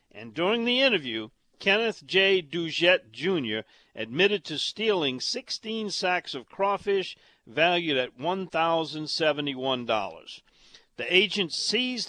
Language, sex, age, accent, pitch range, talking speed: English, male, 50-69, American, 135-190 Hz, 105 wpm